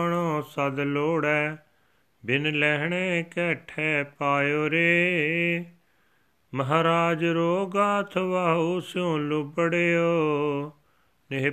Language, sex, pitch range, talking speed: Punjabi, male, 145-170 Hz, 70 wpm